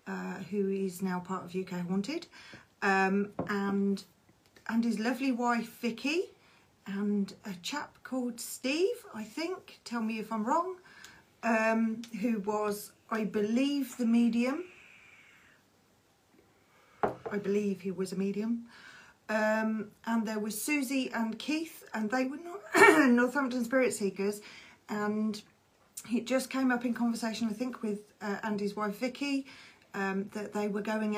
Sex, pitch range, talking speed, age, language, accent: female, 205-260 Hz, 140 wpm, 40-59, English, British